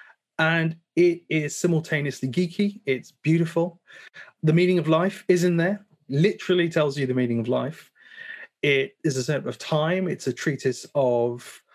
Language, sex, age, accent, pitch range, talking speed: English, male, 30-49, British, 135-180 Hz, 160 wpm